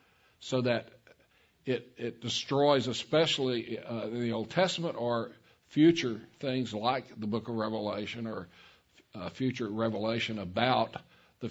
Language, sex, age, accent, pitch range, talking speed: English, male, 60-79, American, 110-135 Hz, 130 wpm